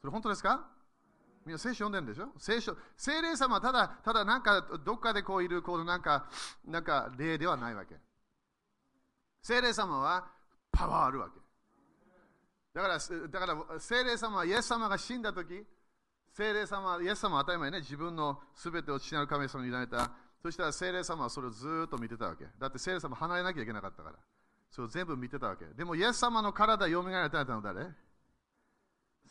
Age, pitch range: 40-59, 155-230 Hz